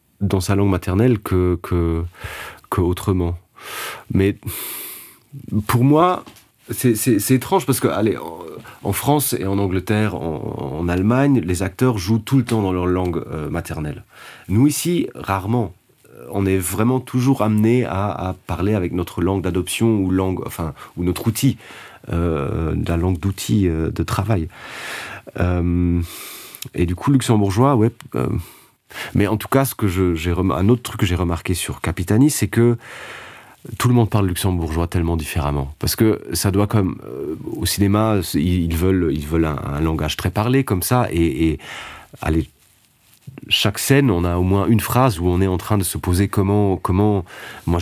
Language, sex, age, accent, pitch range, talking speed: French, male, 30-49, French, 90-115 Hz, 175 wpm